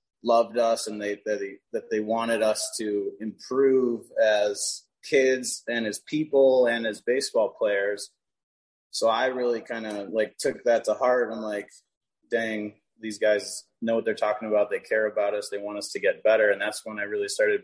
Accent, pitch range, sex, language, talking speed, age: American, 105-115 Hz, male, English, 190 wpm, 20-39